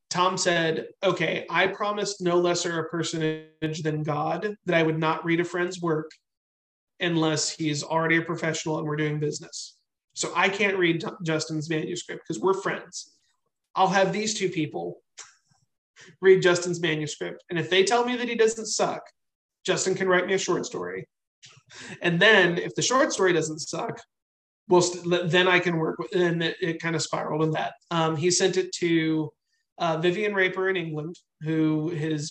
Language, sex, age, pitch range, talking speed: English, male, 30-49, 155-180 Hz, 175 wpm